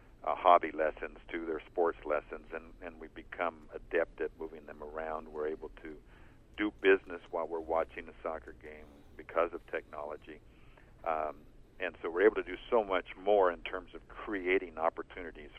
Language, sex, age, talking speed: English, male, 50-69, 175 wpm